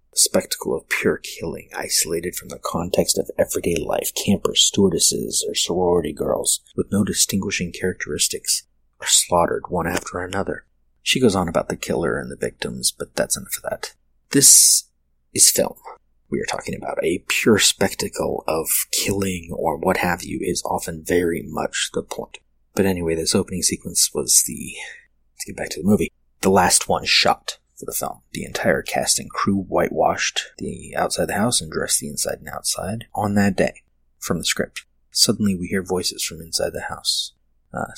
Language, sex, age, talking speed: English, male, 30-49, 180 wpm